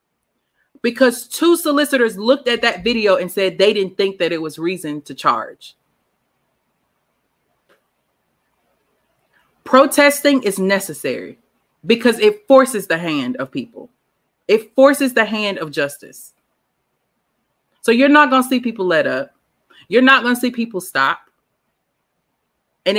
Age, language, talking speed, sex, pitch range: 30-49, English, 130 wpm, female, 195-260 Hz